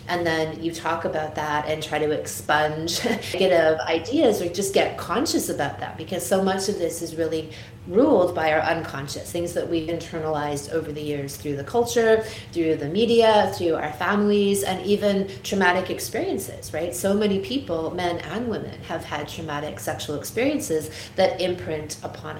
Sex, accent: female, American